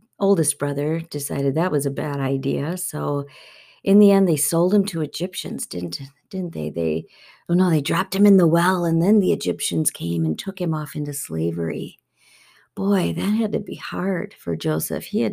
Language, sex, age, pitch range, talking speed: English, female, 50-69, 155-200 Hz, 195 wpm